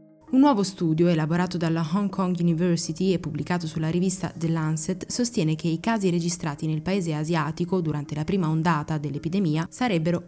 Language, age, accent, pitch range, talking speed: Italian, 20-39, native, 165-200 Hz, 165 wpm